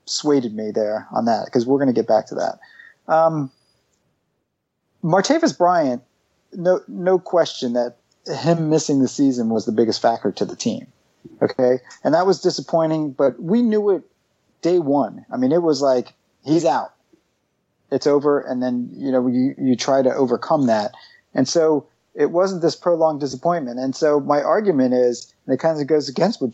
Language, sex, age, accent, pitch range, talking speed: English, male, 40-59, American, 130-165 Hz, 180 wpm